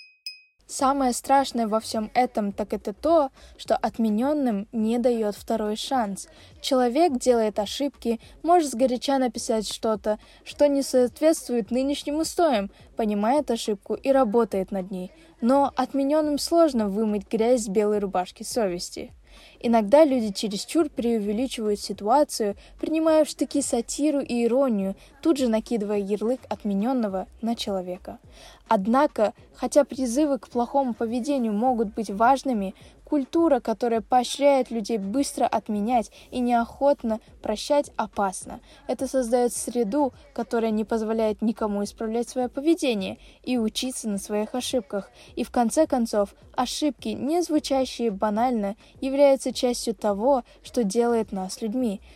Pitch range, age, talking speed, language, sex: 220-275 Hz, 20-39, 125 wpm, Russian, female